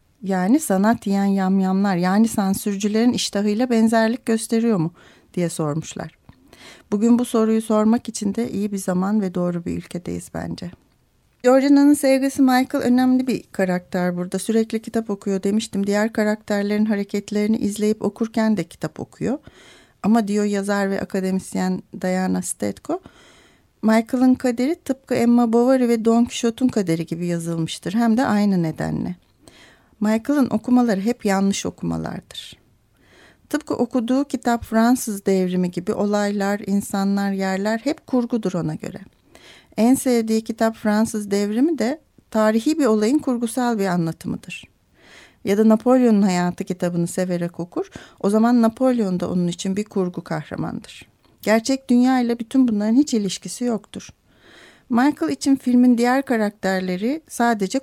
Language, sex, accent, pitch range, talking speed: Turkish, female, native, 190-240 Hz, 130 wpm